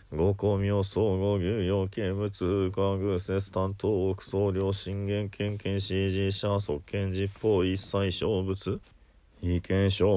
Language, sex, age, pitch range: Japanese, male, 20-39, 95-100 Hz